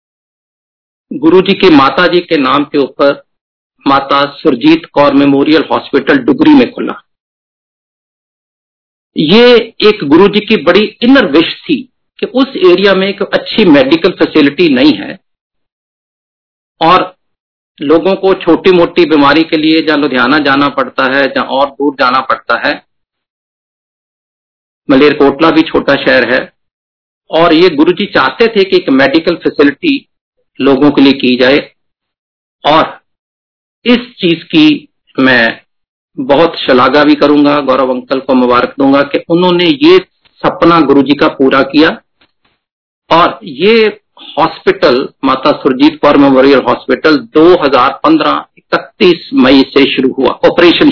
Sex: male